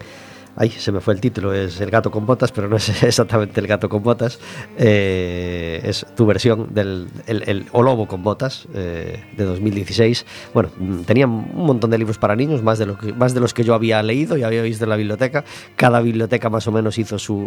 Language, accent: Spanish, Spanish